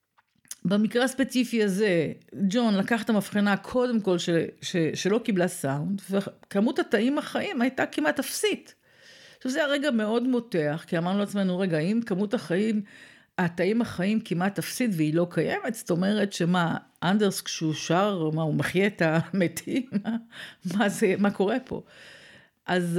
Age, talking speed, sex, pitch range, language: 50-69, 145 wpm, female, 170-235 Hz, Hebrew